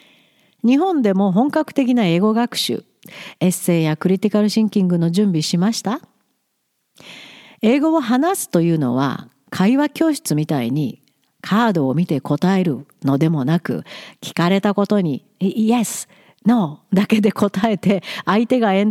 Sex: female